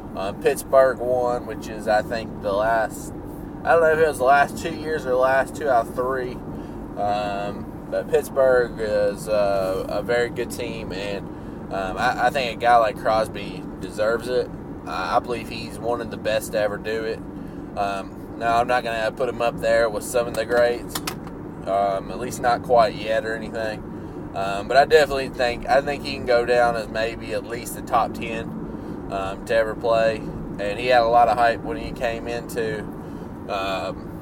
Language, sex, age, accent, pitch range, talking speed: English, male, 20-39, American, 110-130 Hz, 200 wpm